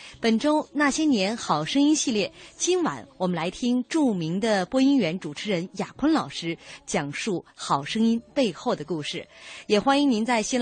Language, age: Chinese, 30-49